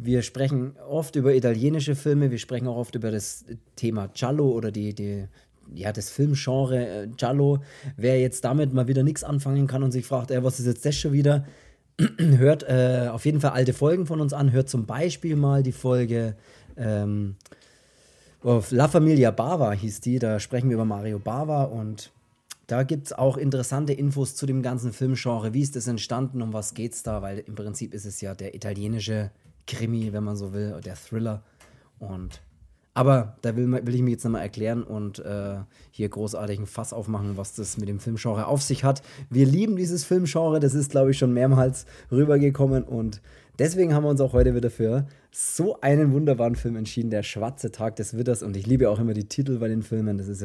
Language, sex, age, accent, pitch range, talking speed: German, male, 30-49, German, 110-135 Hz, 200 wpm